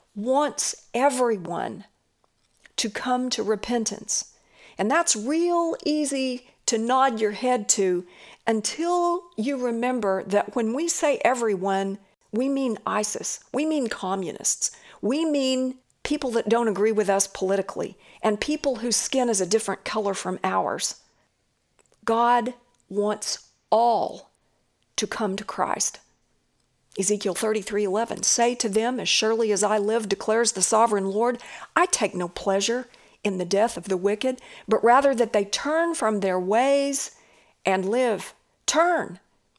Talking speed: 135 wpm